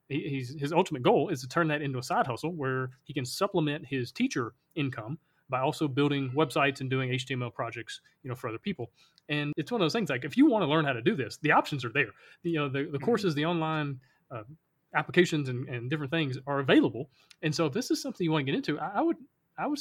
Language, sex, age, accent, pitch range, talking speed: English, male, 30-49, American, 135-165 Hz, 250 wpm